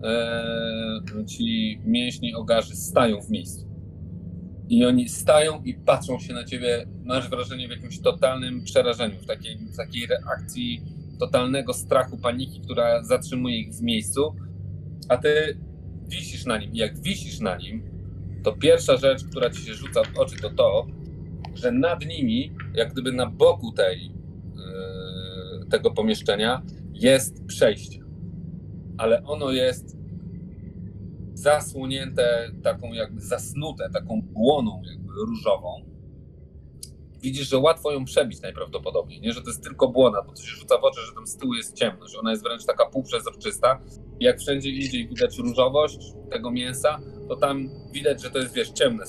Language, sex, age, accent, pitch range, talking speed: Polish, male, 40-59, native, 105-150 Hz, 150 wpm